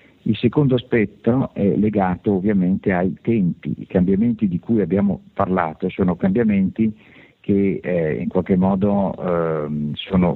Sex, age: male, 50-69